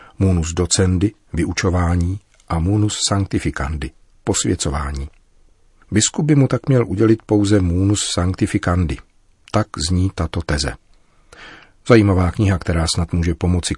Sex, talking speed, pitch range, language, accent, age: male, 115 wpm, 80-95 Hz, Czech, native, 40-59